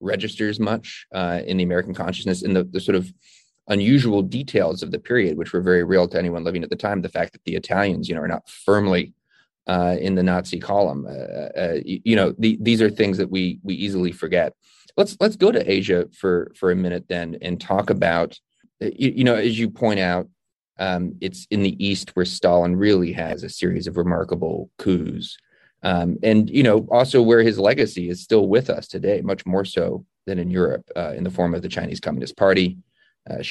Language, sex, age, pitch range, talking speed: English, male, 30-49, 90-100 Hz, 210 wpm